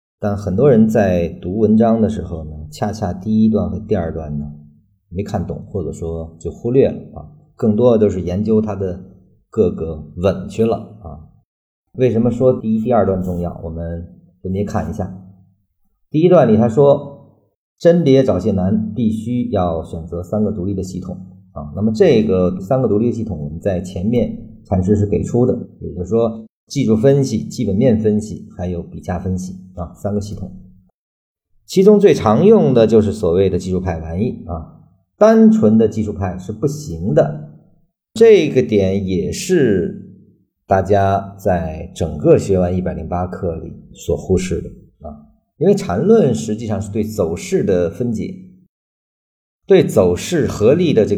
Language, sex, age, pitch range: Chinese, male, 50-69, 90-115 Hz